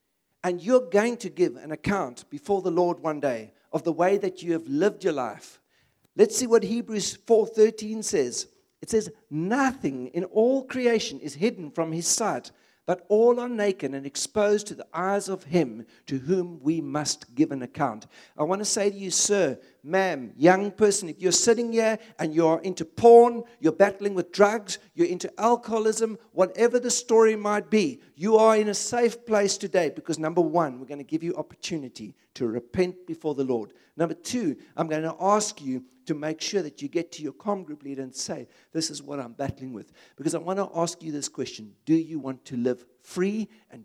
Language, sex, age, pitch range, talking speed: English, male, 60-79, 150-210 Hz, 205 wpm